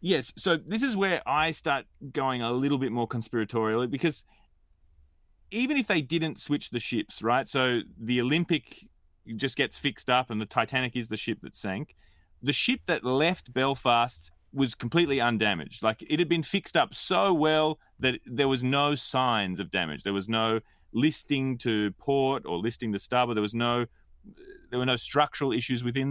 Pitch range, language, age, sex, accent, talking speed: 105-140 Hz, English, 30-49, male, Australian, 180 wpm